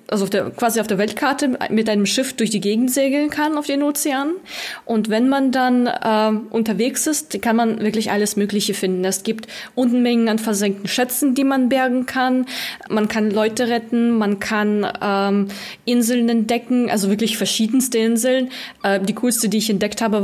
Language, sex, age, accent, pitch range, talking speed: German, female, 20-39, German, 210-250 Hz, 180 wpm